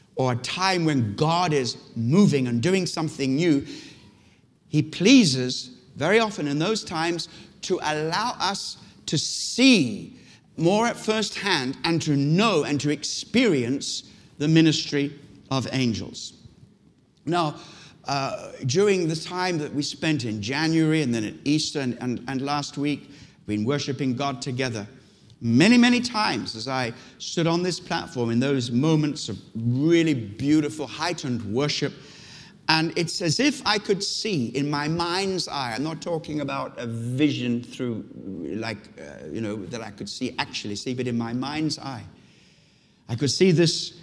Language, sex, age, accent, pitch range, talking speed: English, male, 60-79, British, 125-165 Hz, 155 wpm